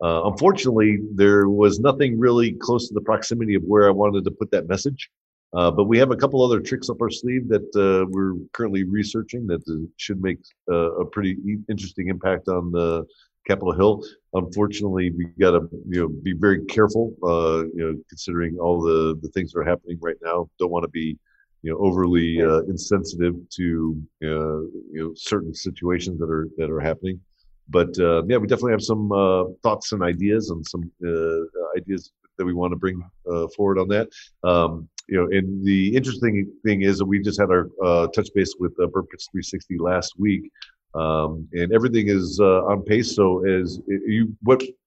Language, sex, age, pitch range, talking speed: English, male, 50-69, 85-105 Hz, 195 wpm